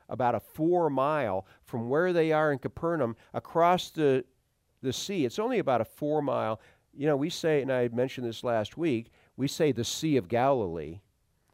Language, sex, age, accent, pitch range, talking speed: English, male, 50-69, American, 115-160 Hz, 175 wpm